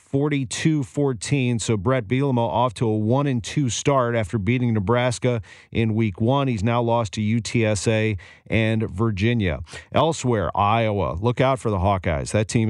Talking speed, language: 155 wpm, English